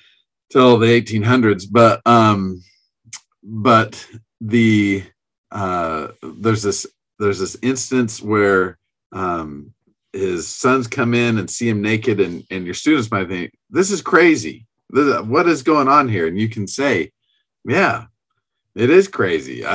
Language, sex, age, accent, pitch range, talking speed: English, male, 40-59, American, 100-115 Hz, 135 wpm